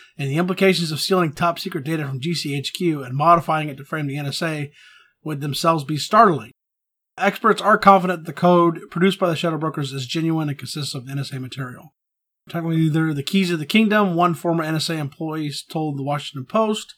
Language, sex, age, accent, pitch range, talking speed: English, male, 30-49, American, 150-180 Hz, 185 wpm